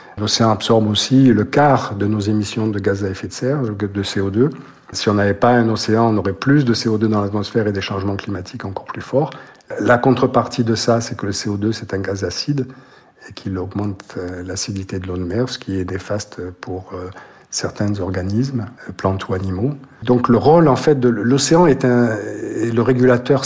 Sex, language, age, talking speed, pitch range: male, French, 50-69, 195 wpm, 100-125 Hz